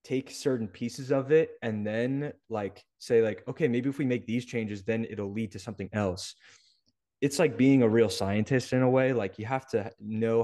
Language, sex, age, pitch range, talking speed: English, male, 20-39, 100-115 Hz, 215 wpm